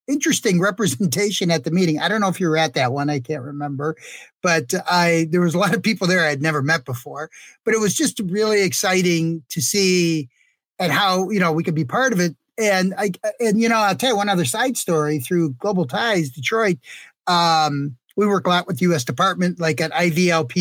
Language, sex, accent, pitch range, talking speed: English, male, American, 160-205 Hz, 225 wpm